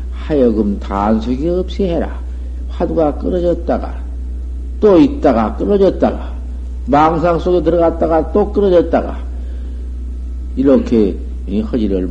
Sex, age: male, 50-69